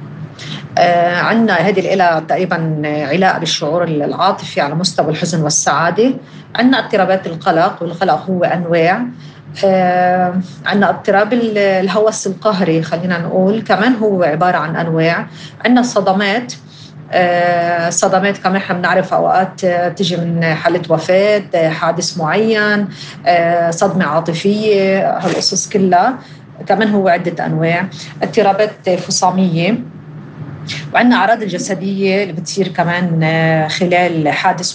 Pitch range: 165-195 Hz